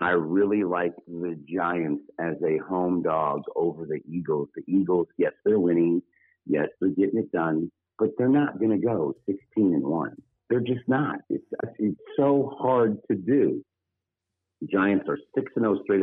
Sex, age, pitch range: male, 50-69, 90-120 Hz